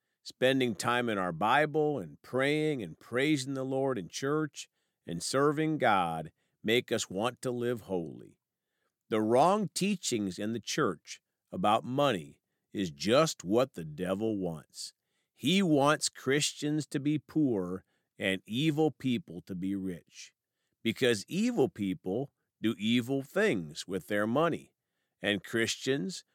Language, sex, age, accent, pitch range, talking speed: English, male, 50-69, American, 95-145 Hz, 135 wpm